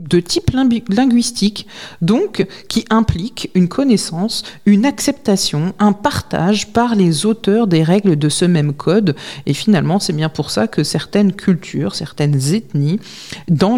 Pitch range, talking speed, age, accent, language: 160-220 Hz, 150 wpm, 40-59, French, French